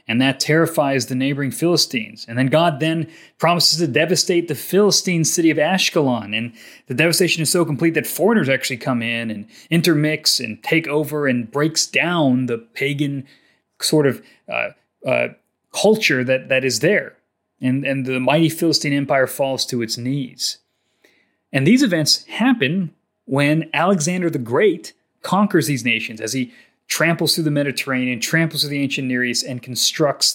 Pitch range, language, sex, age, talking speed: 130-165 Hz, English, male, 30-49, 165 wpm